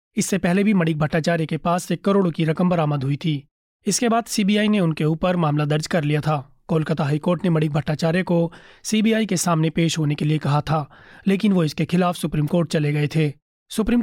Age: 30-49